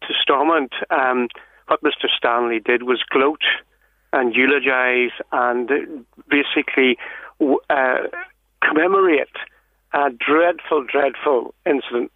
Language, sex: English, male